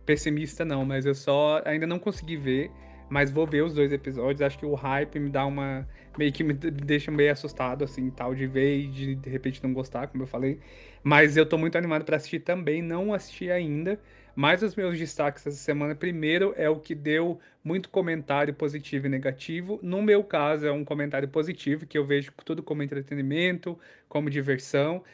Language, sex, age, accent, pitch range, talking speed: Portuguese, male, 20-39, Brazilian, 140-165 Hz, 200 wpm